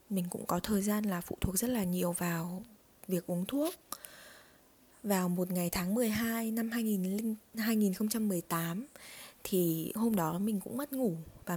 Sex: female